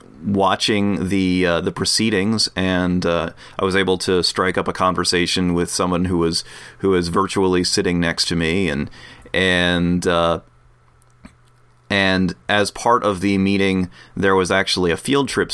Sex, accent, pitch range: male, American, 90-105 Hz